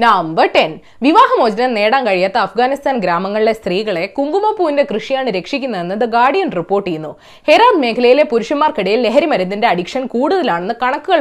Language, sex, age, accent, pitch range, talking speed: Malayalam, female, 20-39, native, 195-295 Hz, 110 wpm